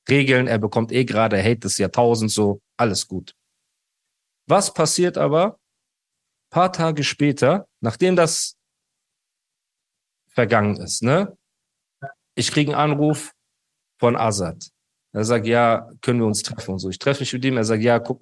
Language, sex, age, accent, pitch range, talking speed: German, male, 40-59, German, 110-145 Hz, 160 wpm